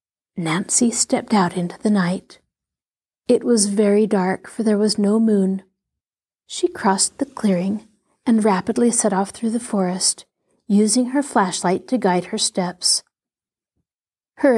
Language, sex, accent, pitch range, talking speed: English, female, American, 195-245 Hz, 140 wpm